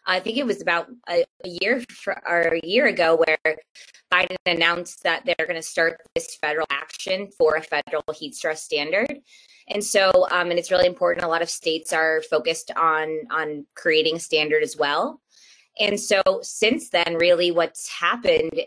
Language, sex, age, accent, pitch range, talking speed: English, female, 20-39, American, 165-215 Hz, 175 wpm